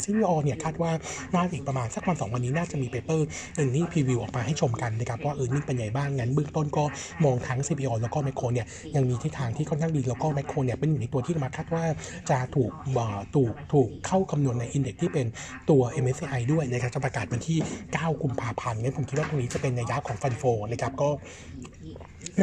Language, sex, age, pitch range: Thai, male, 60-79, 125-155 Hz